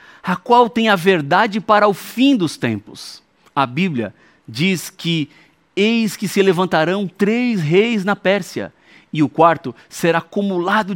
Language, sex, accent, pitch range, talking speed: Portuguese, male, Brazilian, 145-210 Hz, 150 wpm